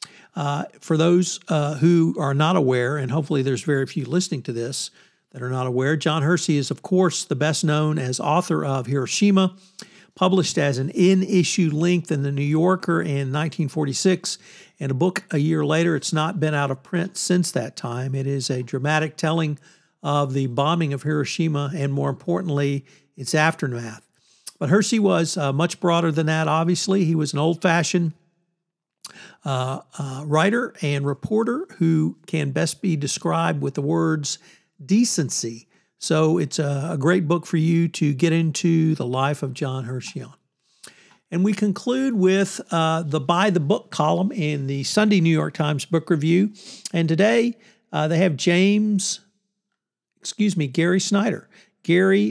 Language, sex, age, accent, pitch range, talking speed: English, male, 50-69, American, 145-185 Hz, 165 wpm